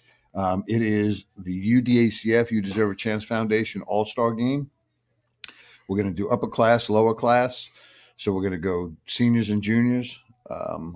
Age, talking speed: 50-69, 160 wpm